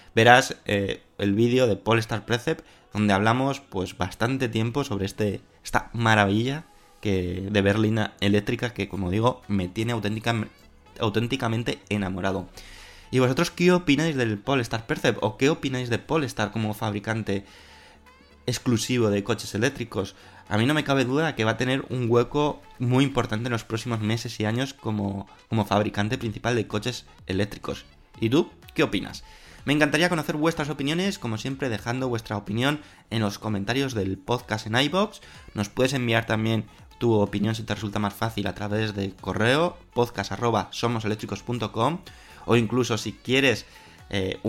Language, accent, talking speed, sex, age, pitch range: Spanish, Spanish, 155 wpm, male, 20-39, 100-125 Hz